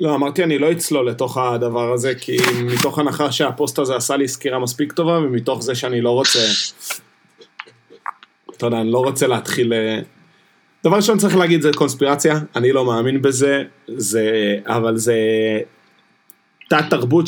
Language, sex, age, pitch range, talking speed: Hebrew, male, 30-49, 115-150 Hz, 150 wpm